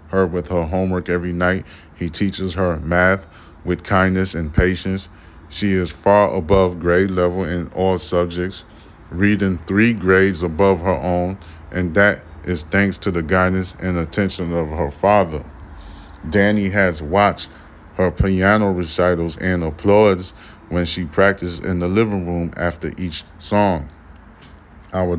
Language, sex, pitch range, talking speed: English, male, 85-95 Hz, 145 wpm